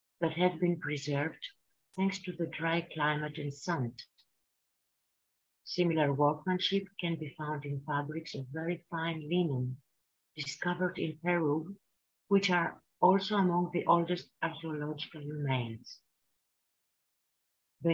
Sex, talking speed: female, 115 wpm